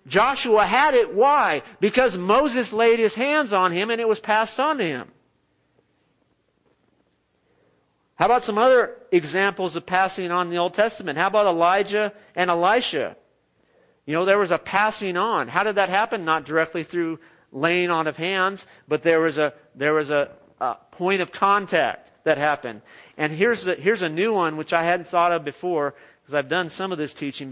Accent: American